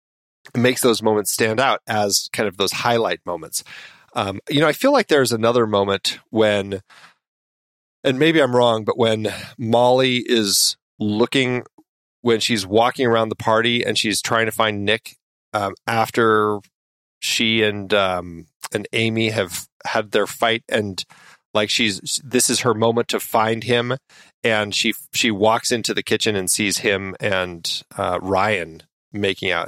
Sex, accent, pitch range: male, American, 110-125 Hz